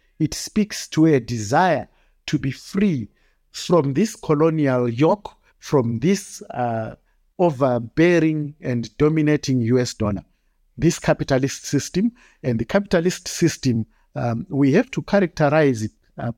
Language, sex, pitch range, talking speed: English, male, 120-175 Hz, 125 wpm